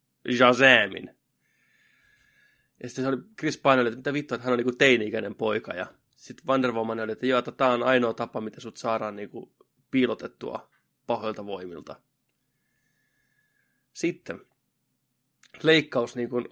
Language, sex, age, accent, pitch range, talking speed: Finnish, male, 20-39, native, 120-150 Hz, 140 wpm